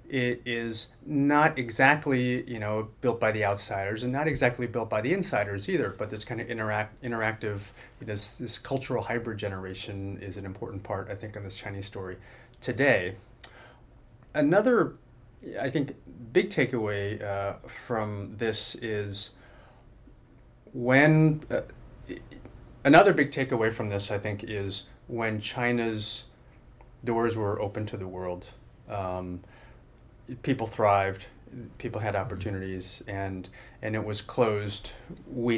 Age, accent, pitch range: 30-49, American, 105-125 Hz